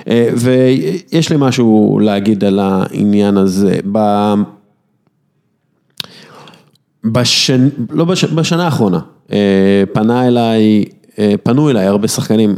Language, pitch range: English, 95-115 Hz